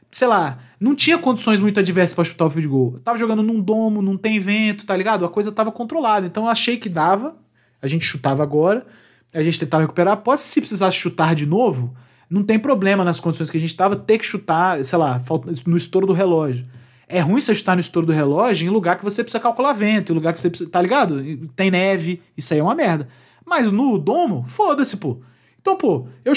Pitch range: 145-215 Hz